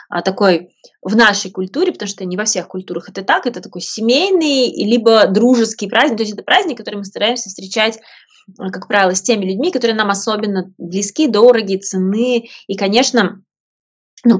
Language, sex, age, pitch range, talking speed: Russian, female, 20-39, 185-225 Hz, 165 wpm